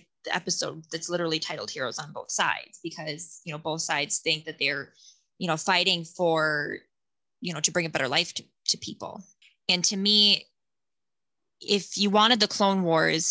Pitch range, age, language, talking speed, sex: 155-185 Hz, 20-39, English, 175 wpm, female